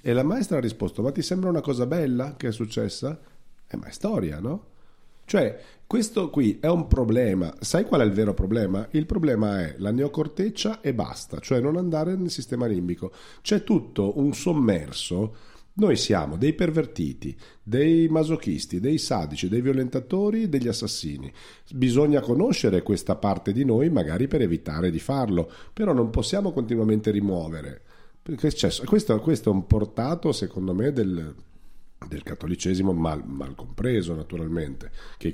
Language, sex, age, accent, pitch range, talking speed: Italian, male, 40-59, native, 90-140 Hz, 155 wpm